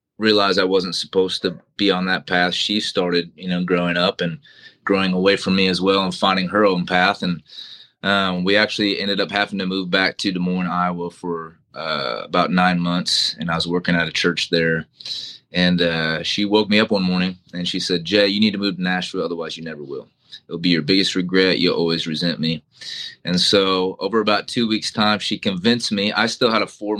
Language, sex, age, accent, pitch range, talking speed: English, male, 30-49, American, 90-105 Hz, 220 wpm